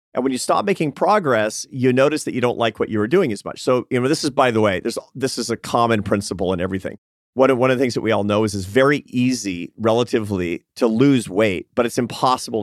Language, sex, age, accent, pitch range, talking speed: English, male, 40-59, American, 105-135 Hz, 250 wpm